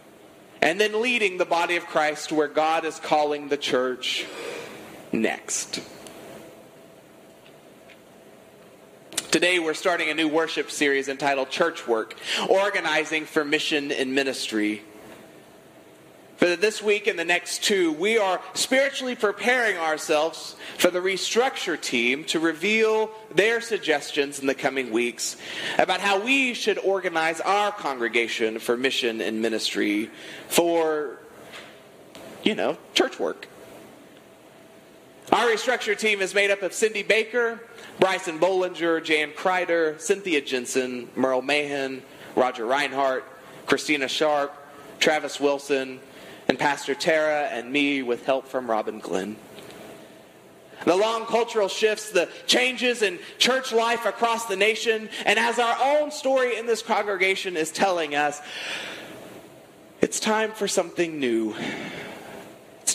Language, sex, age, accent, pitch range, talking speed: English, male, 30-49, American, 145-210 Hz, 125 wpm